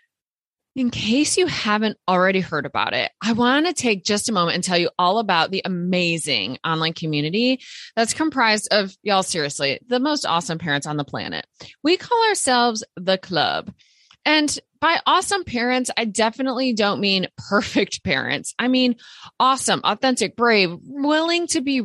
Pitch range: 185-280 Hz